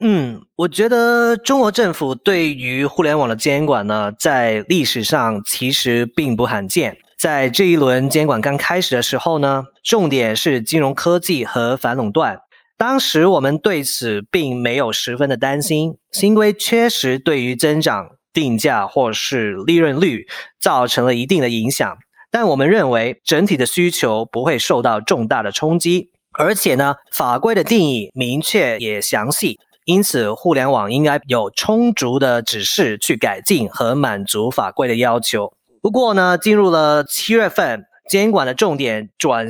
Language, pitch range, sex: Chinese, 125-185 Hz, male